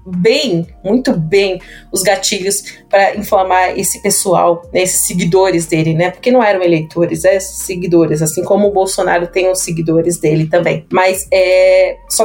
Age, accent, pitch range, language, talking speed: 30-49, Brazilian, 185-225 Hz, Portuguese, 155 wpm